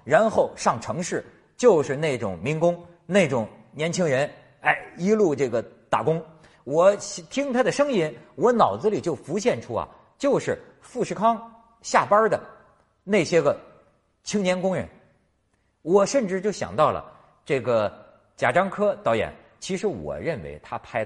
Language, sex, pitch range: Chinese, male, 135-220 Hz